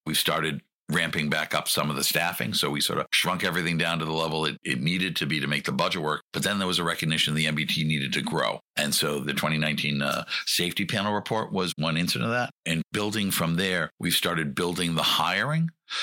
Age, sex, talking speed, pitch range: 60-79, male, 230 wpm, 80-90 Hz